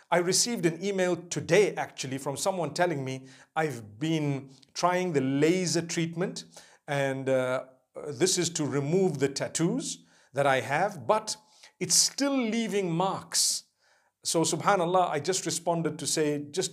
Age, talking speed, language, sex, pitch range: 50-69, 145 wpm, English, male, 140-175 Hz